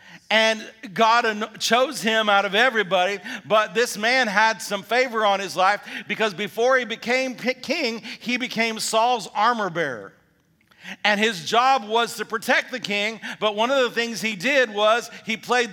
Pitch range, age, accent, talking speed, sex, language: 205-245 Hz, 50-69, American, 170 wpm, male, English